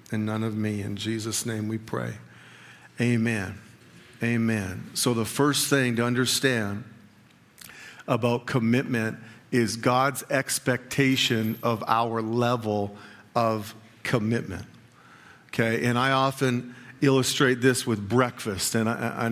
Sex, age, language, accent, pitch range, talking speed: male, 50-69, English, American, 115-135 Hz, 120 wpm